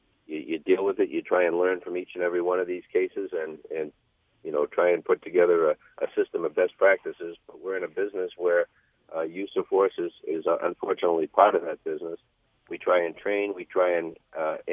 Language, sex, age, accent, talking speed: English, male, 60-79, American, 225 wpm